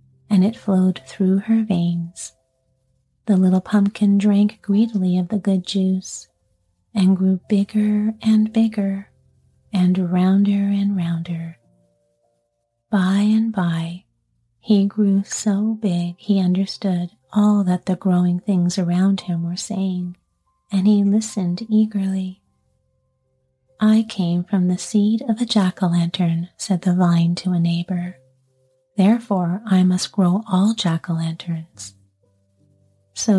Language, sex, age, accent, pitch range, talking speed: English, female, 40-59, American, 165-205 Hz, 120 wpm